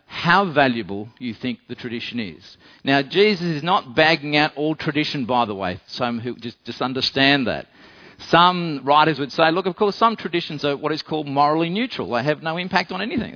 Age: 50-69